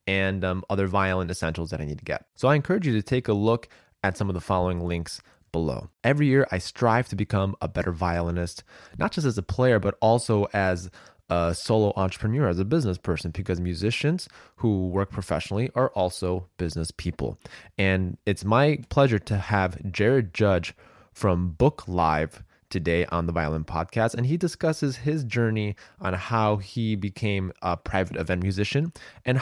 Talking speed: 180 wpm